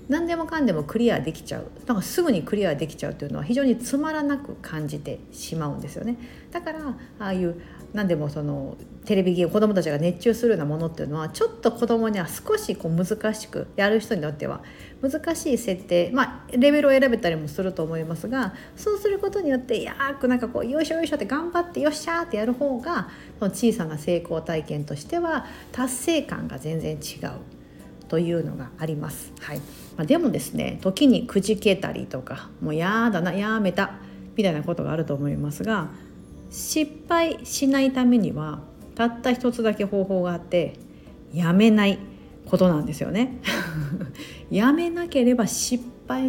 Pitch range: 165-260 Hz